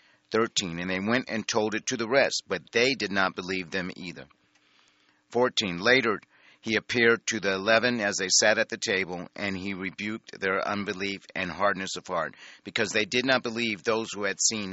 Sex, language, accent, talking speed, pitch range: male, English, American, 195 wpm, 95-115 Hz